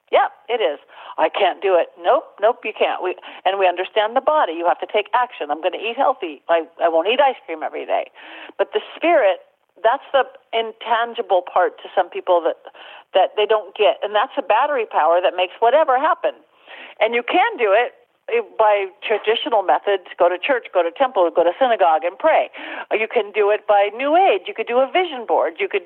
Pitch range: 195-270 Hz